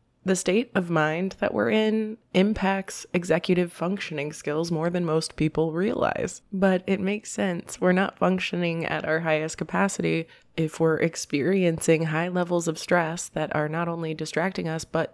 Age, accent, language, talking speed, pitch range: 20-39, American, English, 165 wpm, 160-185 Hz